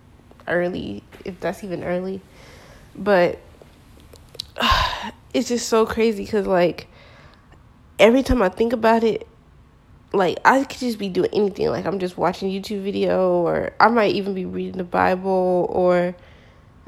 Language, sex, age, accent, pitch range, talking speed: English, female, 20-39, American, 170-205 Hz, 145 wpm